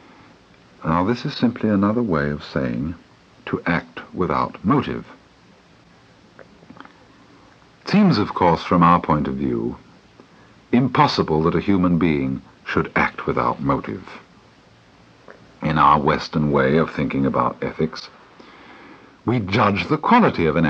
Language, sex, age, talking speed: English, male, 60-79, 130 wpm